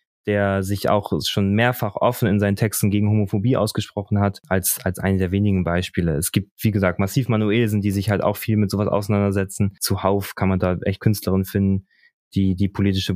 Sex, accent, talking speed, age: male, German, 200 wpm, 20-39